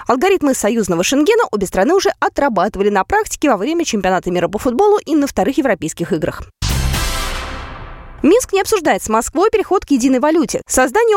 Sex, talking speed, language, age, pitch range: female, 160 wpm, Russian, 20-39, 190-295 Hz